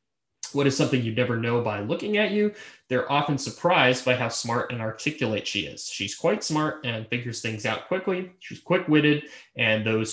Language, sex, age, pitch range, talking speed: English, male, 20-39, 110-145 Hz, 190 wpm